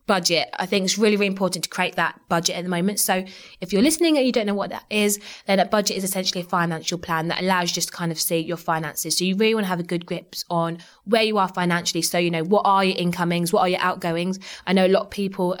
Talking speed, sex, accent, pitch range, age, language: 285 wpm, female, British, 175-205 Hz, 20-39, English